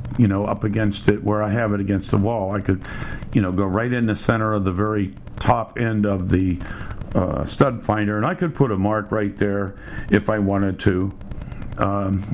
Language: English